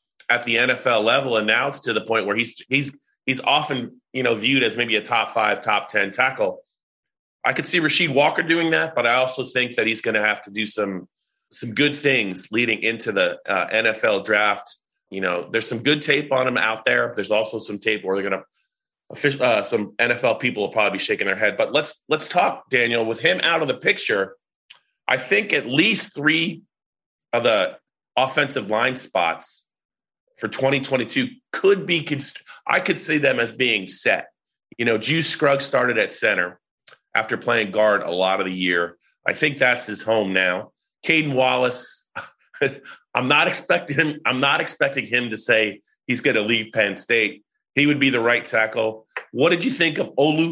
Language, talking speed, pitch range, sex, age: English, 190 wpm, 110-155 Hz, male, 30-49